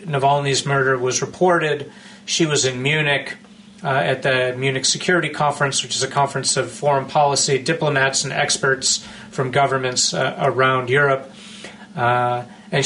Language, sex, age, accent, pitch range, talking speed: English, male, 40-59, American, 130-155 Hz, 145 wpm